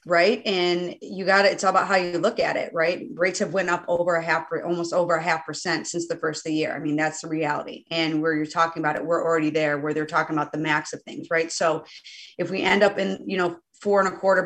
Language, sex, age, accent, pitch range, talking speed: English, female, 30-49, American, 170-195 Hz, 280 wpm